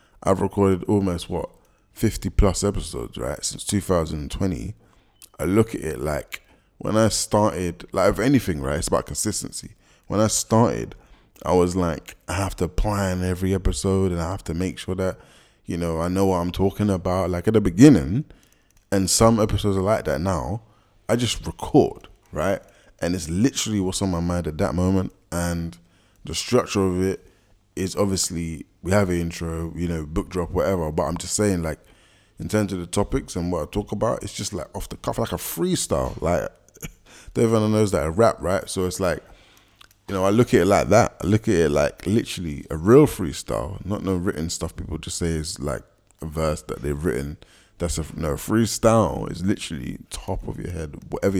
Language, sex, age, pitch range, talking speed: English, male, 20-39, 85-105 Hz, 195 wpm